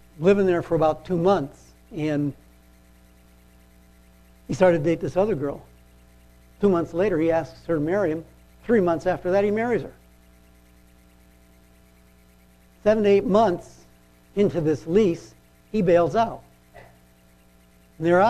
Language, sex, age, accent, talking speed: English, male, 60-79, American, 135 wpm